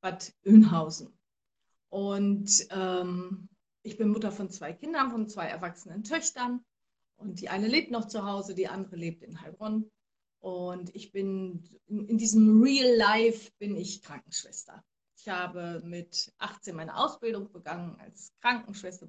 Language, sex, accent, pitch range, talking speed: German, female, German, 175-215 Hz, 140 wpm